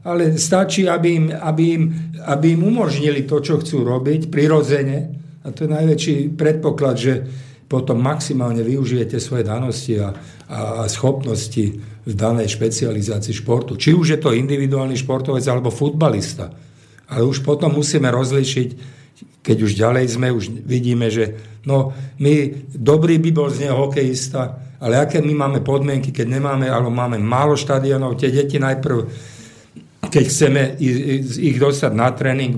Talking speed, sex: 145 wpm, male